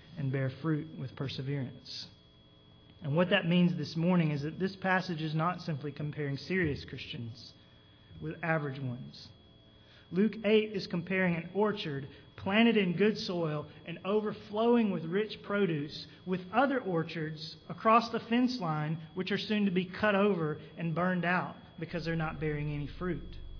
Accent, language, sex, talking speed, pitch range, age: American, English, male, 160 wpm, 140-190 Hz, 30-49